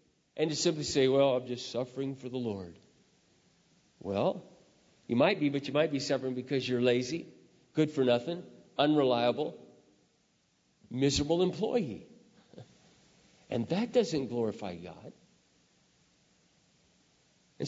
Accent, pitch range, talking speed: American, 130-185 Hz, 120 wpm